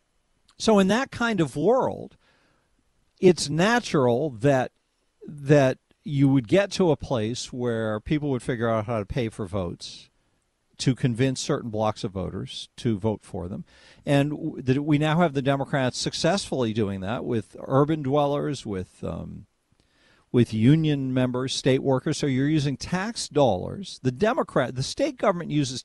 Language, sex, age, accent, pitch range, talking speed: English, male, 50-69, American, 135-210 Hz, 155 wpm